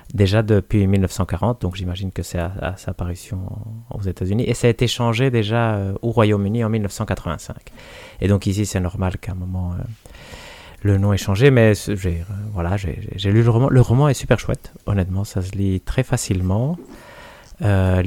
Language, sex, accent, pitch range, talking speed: French, male, French, 90-115 Hz, 185 wpm